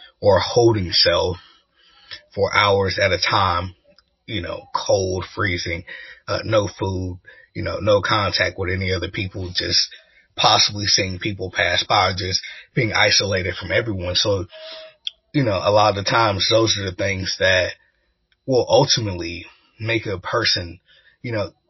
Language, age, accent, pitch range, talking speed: English, 30-49, American, 90-110 Hz, 150 wpm